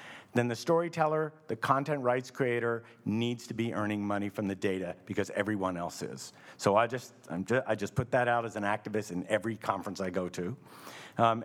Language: English